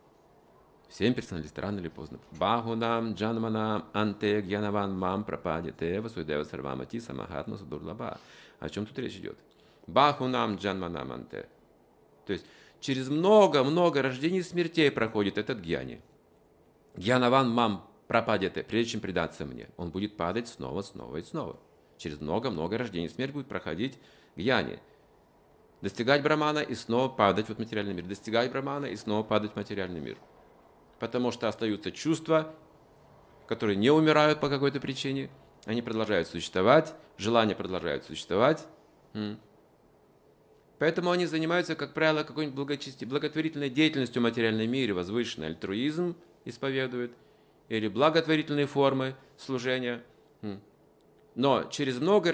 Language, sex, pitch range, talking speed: Russian, male, 105-145 Hz, 125 wpm